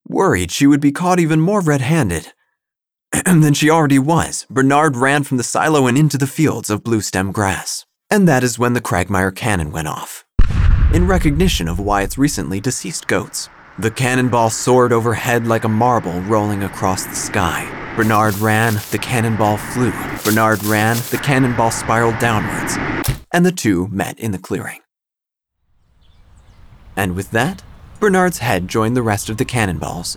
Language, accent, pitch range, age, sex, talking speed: English, American, 100-140 Hz, 30-49, male, 160 wpm